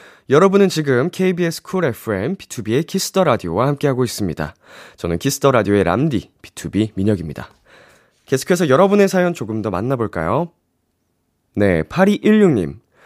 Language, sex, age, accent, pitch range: Korean, male, 20-39, native, 95-155 Hz